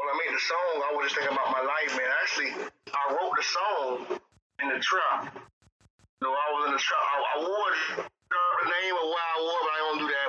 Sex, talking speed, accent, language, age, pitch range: male, 245 wpm, American, English, 20-39, 140-185 Hz